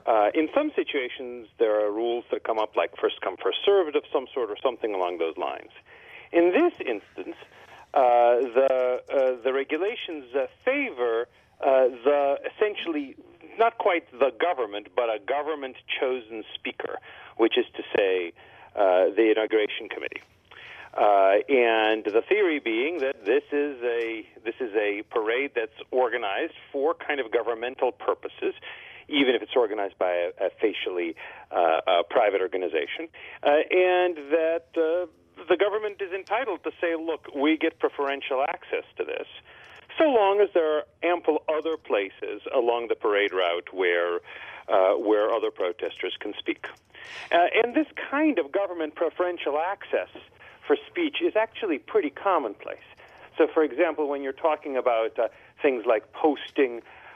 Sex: male